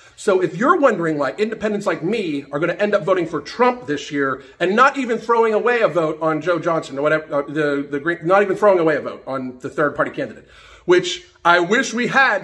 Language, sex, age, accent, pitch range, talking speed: English, male, 40-59, American, 175-230 Hz, 240 wpm